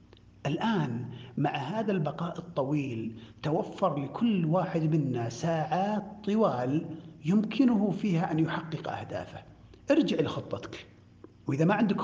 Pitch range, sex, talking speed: 140-190 Hz, male, 105 wpm